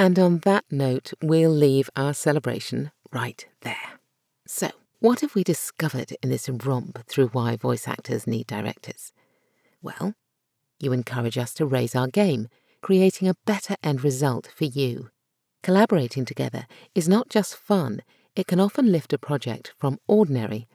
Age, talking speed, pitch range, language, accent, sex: 50-69, 155 wpm, 130-190 Hz, English, British, female